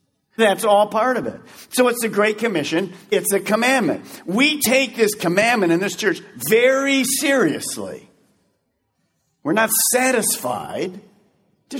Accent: American